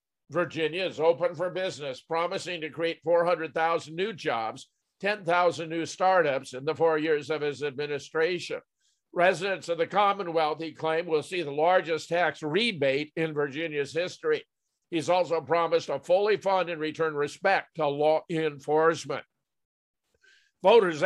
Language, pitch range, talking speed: English, 155-190 Hz, 140 wpm